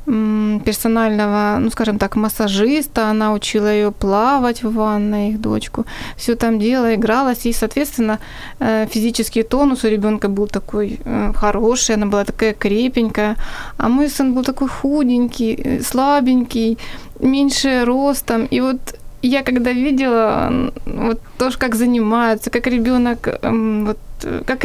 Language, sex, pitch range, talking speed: Ukrainian, female, 215-245 Hz, 125 wpm